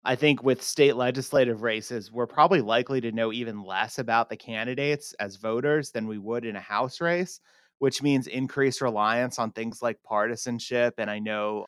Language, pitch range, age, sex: English, 110-130 Hz, 30-49, male